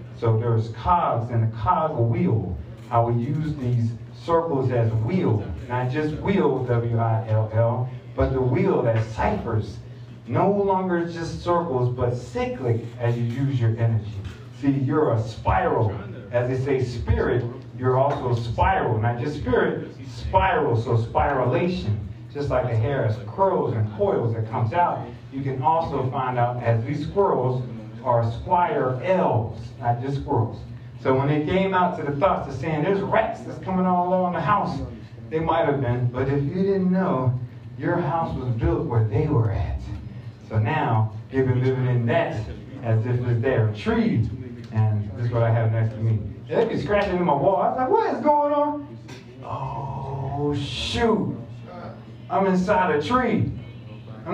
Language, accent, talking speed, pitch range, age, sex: English, American, 170 wpm, 115-150 Hz, 30-49, male